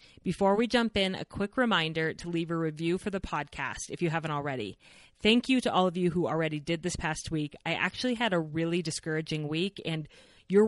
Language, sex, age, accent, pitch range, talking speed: English, female, 30-49, American, 160-195 Hz, 220 wpm